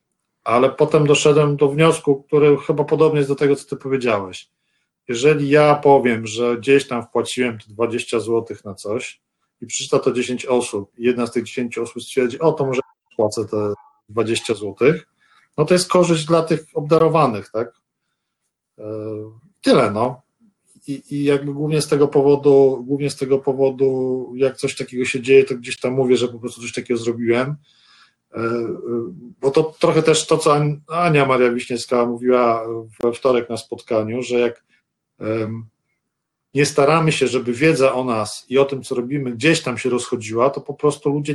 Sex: male